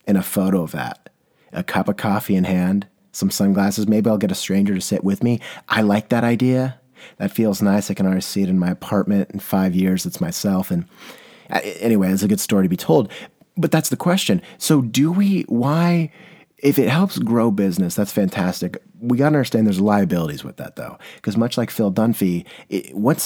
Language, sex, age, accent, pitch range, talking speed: English, male, 30-49, American, 95-125 Hz, 210 wpm